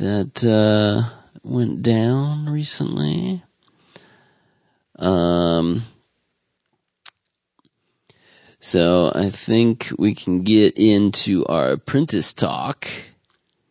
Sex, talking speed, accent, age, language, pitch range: male, 70 wpm, American, 40-59, English, 85-115 Hz